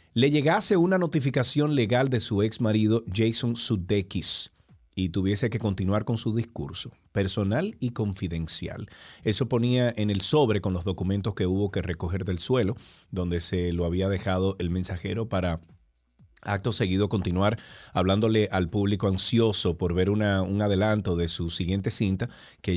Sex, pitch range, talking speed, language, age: male, 95-120 Hz, 155 wpm, Spanish, 30-49